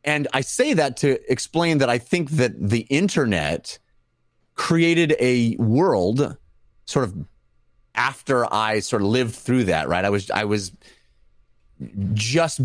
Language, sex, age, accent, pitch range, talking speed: English, male, 30-49, American, 105-135 Hz, 140 wpm